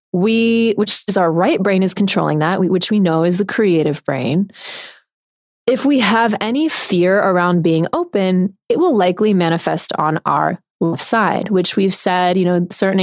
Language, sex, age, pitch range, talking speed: English, female, 20-39, 175-215 Hz, 175 wpm